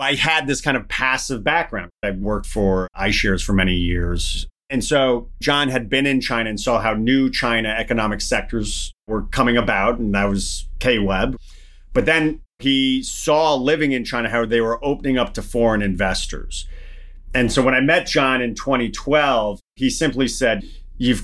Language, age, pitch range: English, 30-49, 100-135 Hz